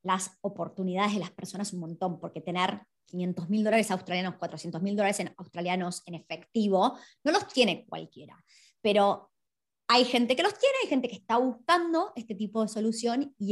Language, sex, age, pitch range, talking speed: Spanish, male, 20-39, 185-235 Hz, 170 wpm